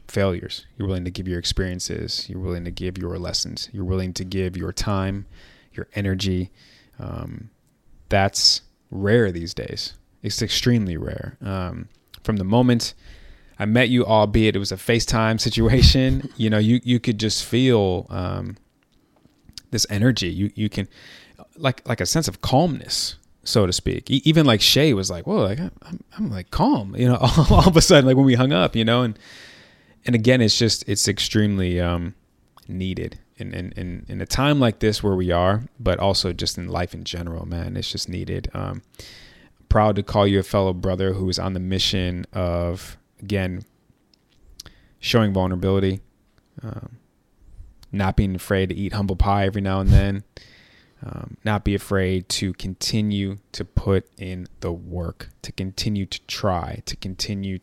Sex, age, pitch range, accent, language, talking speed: male, 30-49, 90-115 Hz, American, English, 170 wpm